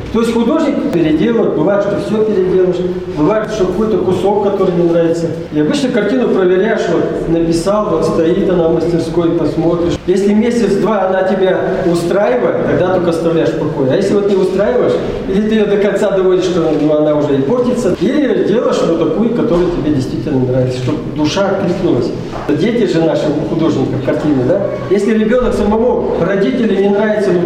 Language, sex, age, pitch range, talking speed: Russian, male, 40-59, 165-210 Hz, 170 wpm